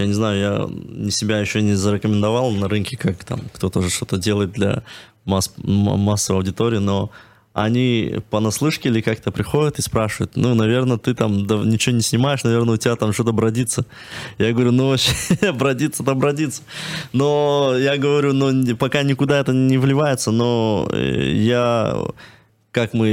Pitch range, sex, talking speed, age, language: 105-125 Hz, male, 155 wpm, 20-39, Russian